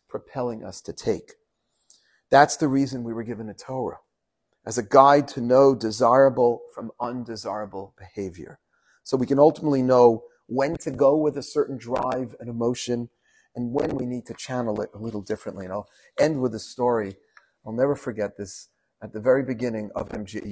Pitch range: 110-130 Hz